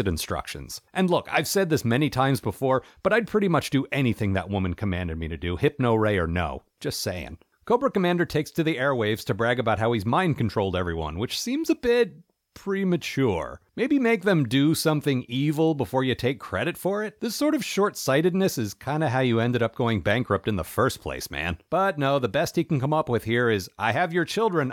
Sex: male